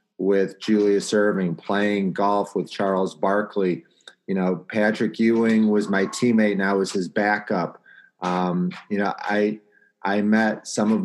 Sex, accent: male, American